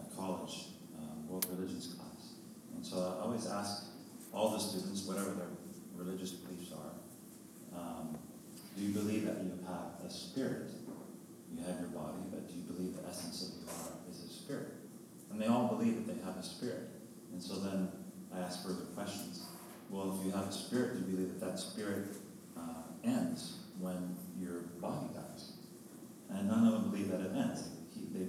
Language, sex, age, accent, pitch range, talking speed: English, male, 40-59, American, 90-105 Hz, 180 wpm